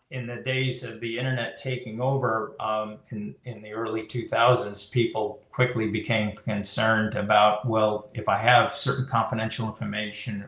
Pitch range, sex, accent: 105-125 Hz, male, American